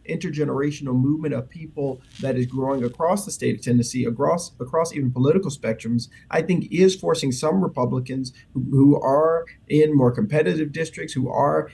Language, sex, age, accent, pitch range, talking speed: English, male, 30-49, American, 125-155 Hz, 160 wpm